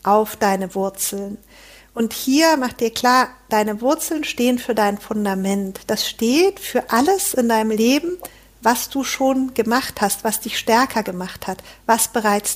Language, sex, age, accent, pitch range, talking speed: German, female, 50-69, German, 215-280 Hz, 160 wpm